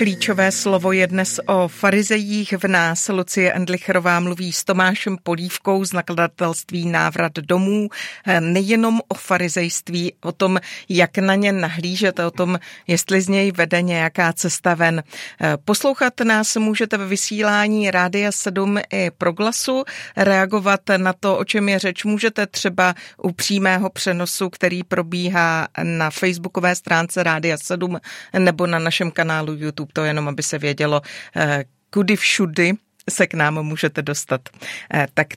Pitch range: 170-195 Hz